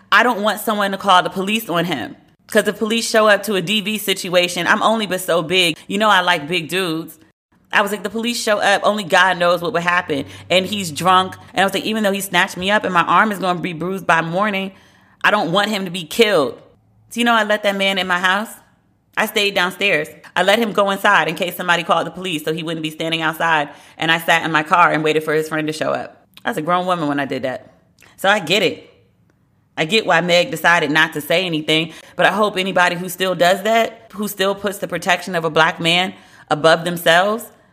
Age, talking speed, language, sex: 30-49, 250 wpm, English, female